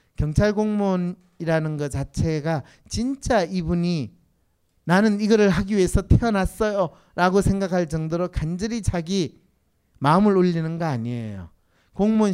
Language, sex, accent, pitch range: Korean, male, native, 125-190 Hz